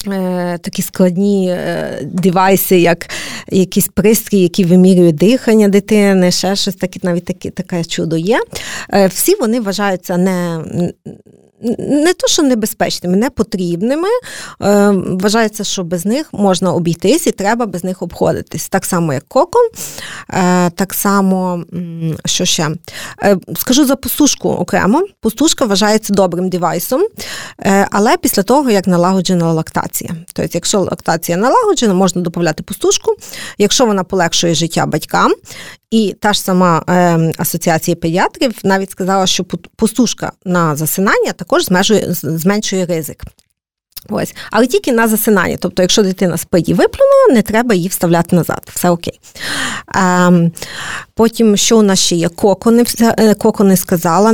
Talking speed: 130 wpm